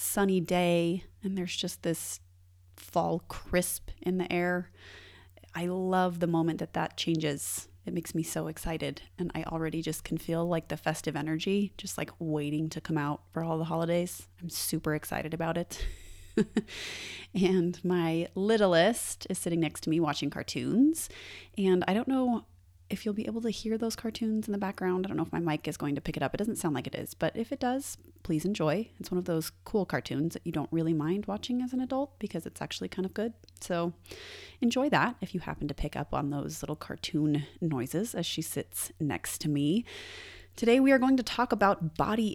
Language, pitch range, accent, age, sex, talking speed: English, 150-195 Hz, American, 30-49, female, 205 wpm